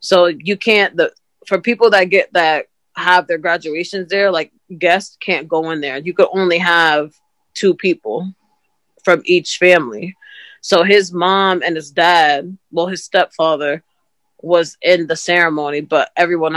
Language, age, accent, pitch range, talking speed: English, 20-39, American, 170-235 Hz, 155 wpm